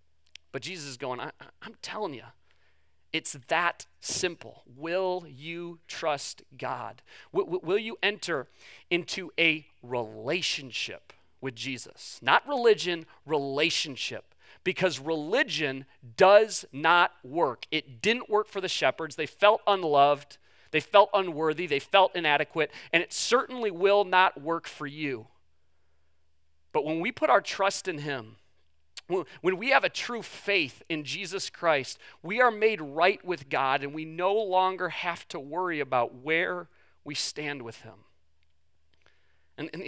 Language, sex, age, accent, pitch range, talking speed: English, male, 30-49, American, 115-185 Hz, 140 wpm